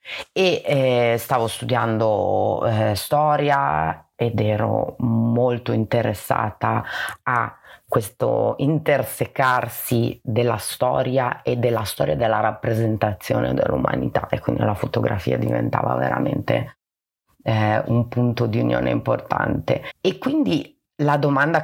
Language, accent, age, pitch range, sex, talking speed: Italian, native, 30-49, 115-135 Hz, female, 105 wpm